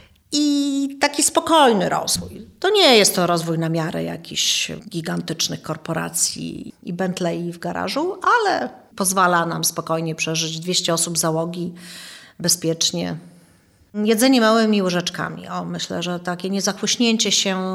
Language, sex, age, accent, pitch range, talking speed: Polish, female, 40-59, native, 180-220 Hz, 120 wpm